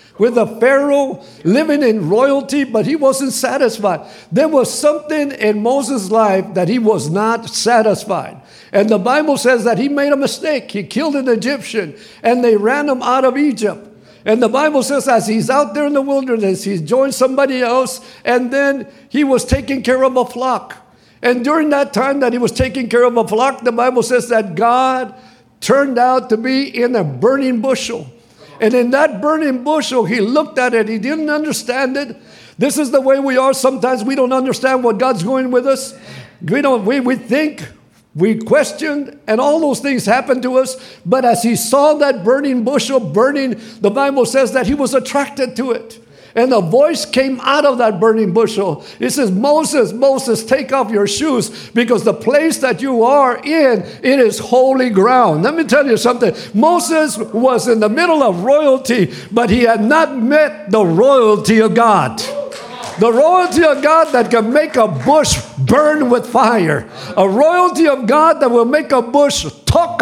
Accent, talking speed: American, 190 wpm